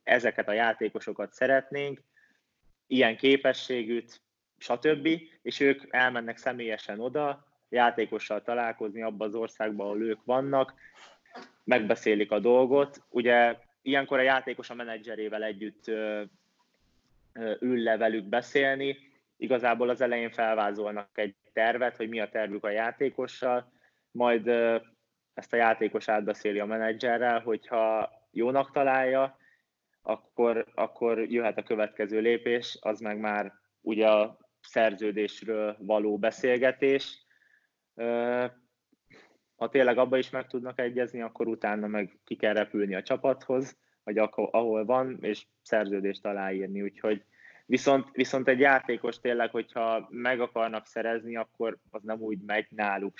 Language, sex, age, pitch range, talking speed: Hungarian, male, 20-39, 110-130 Hz, 120 wpm